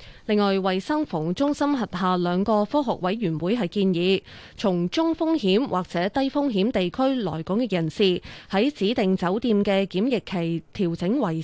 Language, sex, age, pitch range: Chinese, female, 20-39, 180-225 Hz